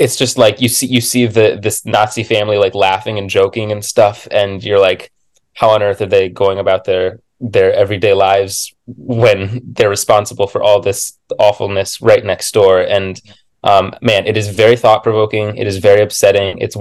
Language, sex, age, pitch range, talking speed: English, male, 20-39, 95-130 Hz, 190 wpm